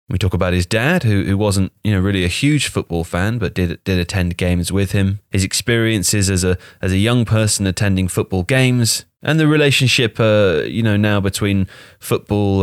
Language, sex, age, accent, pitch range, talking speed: English, male, 30-49, British, 90-110 Hz, 200 wpm